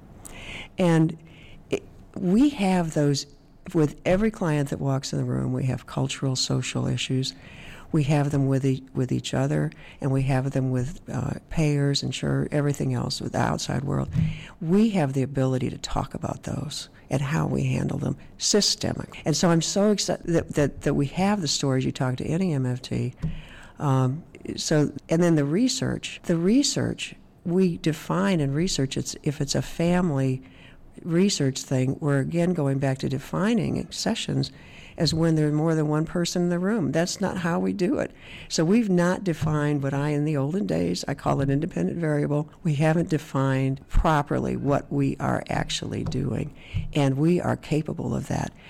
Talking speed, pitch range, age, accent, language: 175 wpm, 135-170 Hz, 60-79, American, English